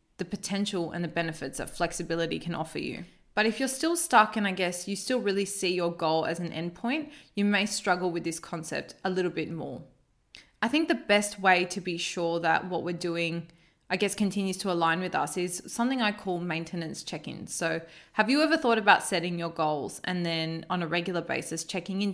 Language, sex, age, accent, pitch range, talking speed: English, female, 20-39, Australian, 170-210 Hz, 215 wpm